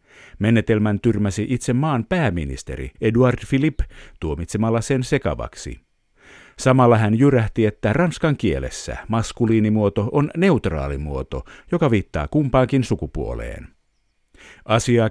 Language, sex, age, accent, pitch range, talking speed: Finnish, male, 50-69, native, 95-125 Hz, 95 wpm